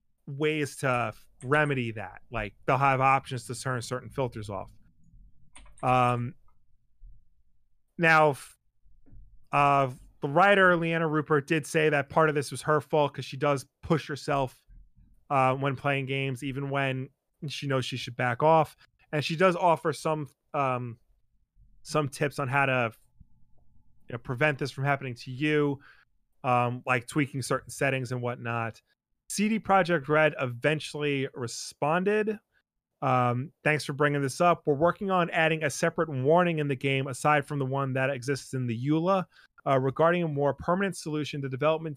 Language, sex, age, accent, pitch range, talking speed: English, male, 30-49, American, 130-155 Hz, 155 wpm